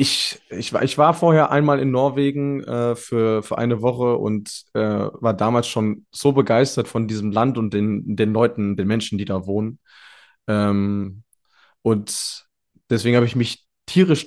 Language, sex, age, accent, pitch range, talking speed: German, male, 20-39, German, 110-130 Hz, 165 wpm